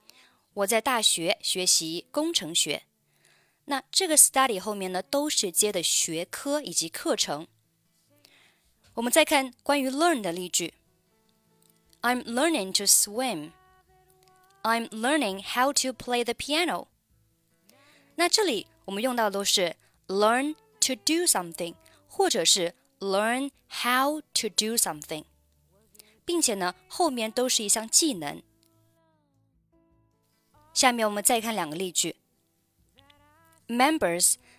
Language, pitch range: Chinese, 165-260 Hz